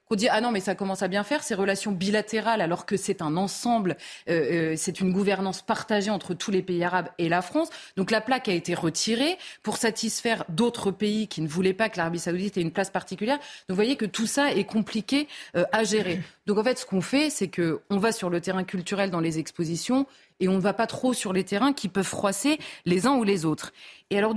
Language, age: French, 30-49